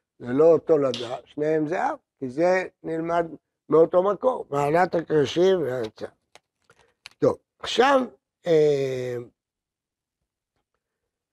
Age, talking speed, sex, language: 60-79, 80 wpm, male, Hebrew